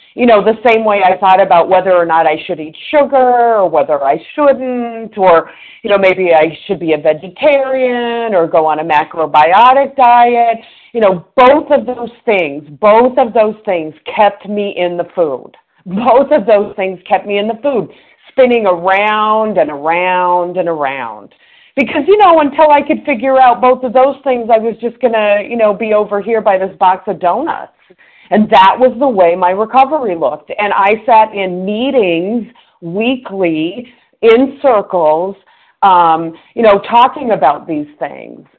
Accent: American